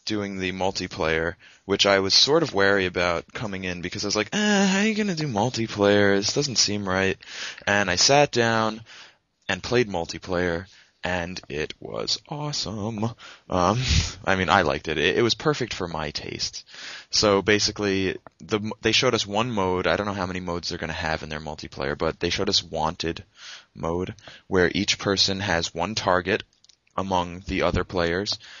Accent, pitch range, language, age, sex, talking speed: American, 85-105 Hz, English, 20-39, male, 185 wpm